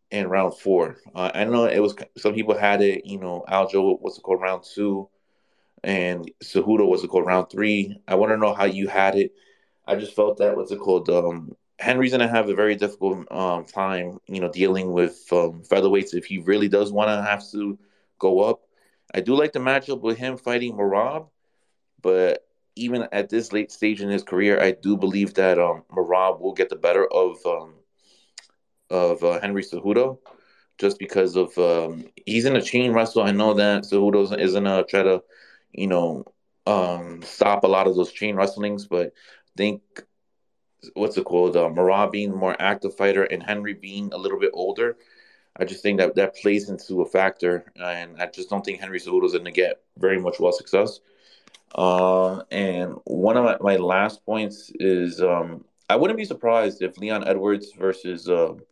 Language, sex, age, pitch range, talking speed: English, male, 20-39, 95-115 Hz, 195 wpm